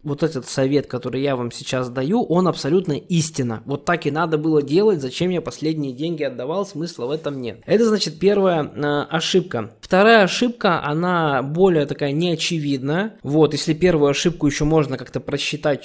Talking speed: 165 wpm